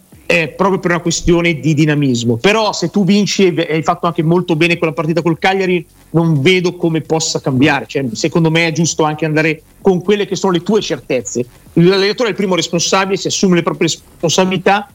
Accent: native